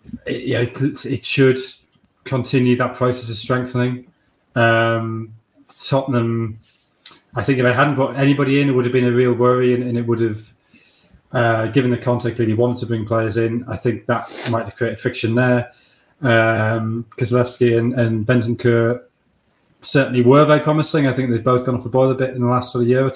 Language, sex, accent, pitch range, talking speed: English, male, British, 115-130 Hz, 195 wpm